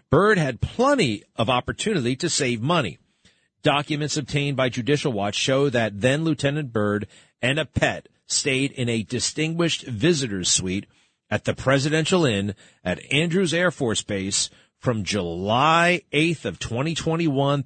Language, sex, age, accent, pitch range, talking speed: English, male, 40-59, American, 115-155 Hz, 135 wpm